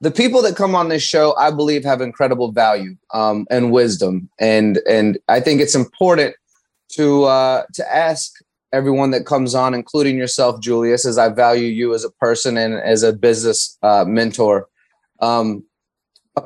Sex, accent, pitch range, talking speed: male, American, 115-145 Hz, 170 wpm